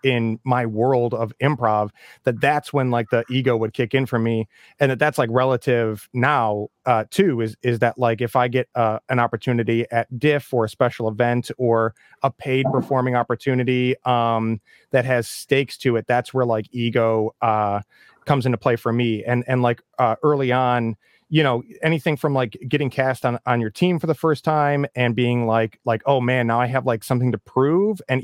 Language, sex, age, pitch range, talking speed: English, male, 30-49, 120-140 Hz, 205 wpm